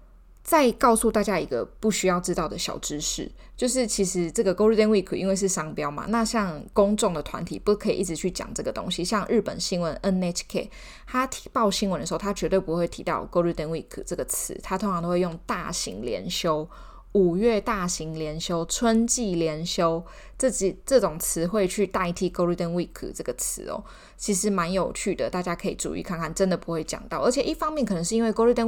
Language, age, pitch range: Chinese, 20-39, 175-220 Hz